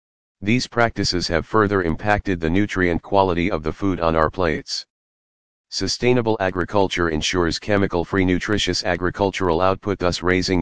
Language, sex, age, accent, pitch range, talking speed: English, male, 40-59, American, 85-100 Hz, 130 wpm